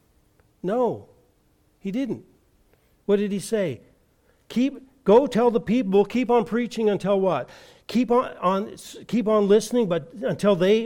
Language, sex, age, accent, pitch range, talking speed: English, male, 50-69, American, 170-215 Hz, 145 wpm